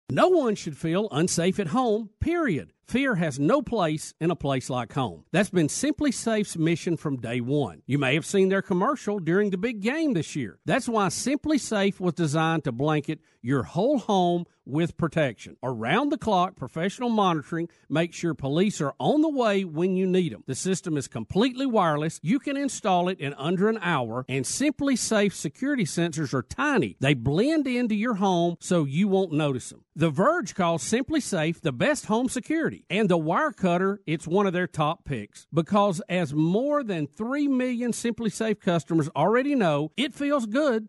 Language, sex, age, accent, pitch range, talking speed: English, male, 50-69, American, 160-235 Hz, 185 wpm